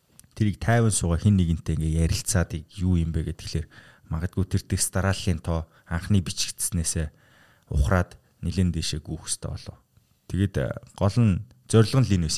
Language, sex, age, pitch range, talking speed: English, male, 20-39, 85-100 Hz, 140 wpm